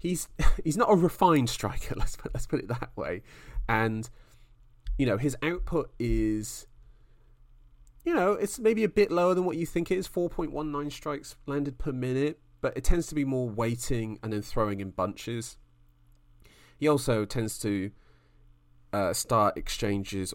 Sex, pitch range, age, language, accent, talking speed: male, 95-120 Hz, 30-49, English, British, 165 wpm